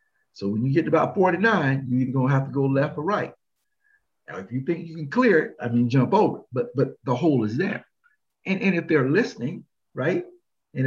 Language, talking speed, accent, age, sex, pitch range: English, 225 wpm, American, 50-69, male, 120-160 Hz